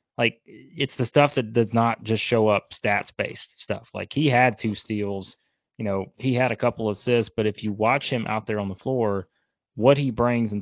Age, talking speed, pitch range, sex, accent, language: 20-39, 225 wpm, 100-120 Hz, male, American, English